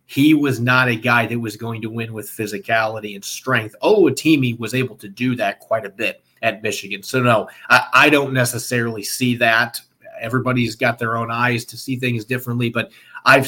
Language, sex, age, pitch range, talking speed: English, male, 30-49, 115-140 Hz, 195 wpm